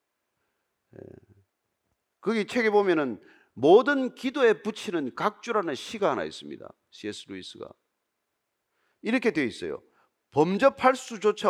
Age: 40-59